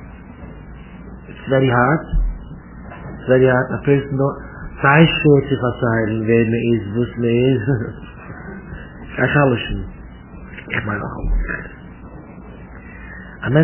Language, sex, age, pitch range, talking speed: English, male, 50-69, 130-180 Hz, 55 wpm